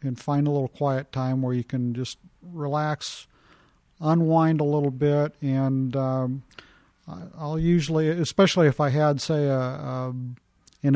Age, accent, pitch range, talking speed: 50-69, American, 125-150 Hz, 150 wpm